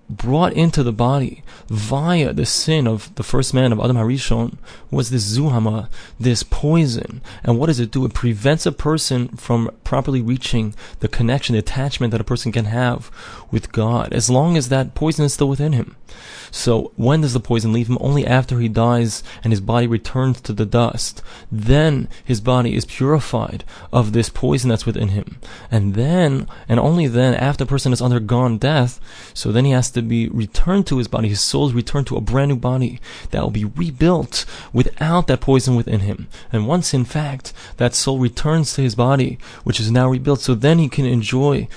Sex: male